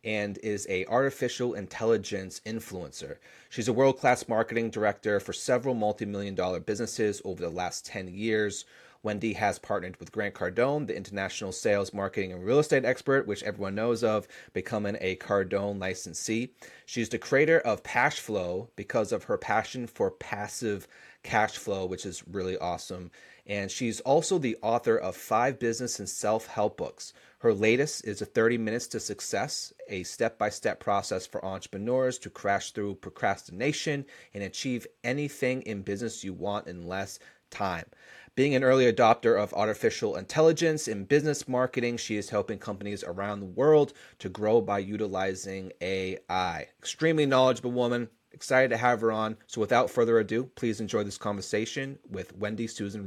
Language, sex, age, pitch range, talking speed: English, male, 30-49, 100-125 Hz, 155 wpm